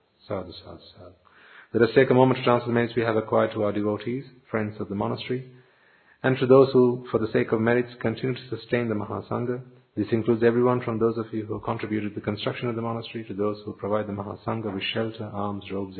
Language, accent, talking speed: English, Indian, 230 wpm